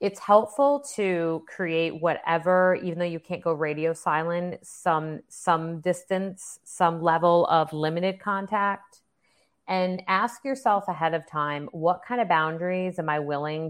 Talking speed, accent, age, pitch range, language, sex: 145 wpm, American, 30-49, 160-190 Hz, English, female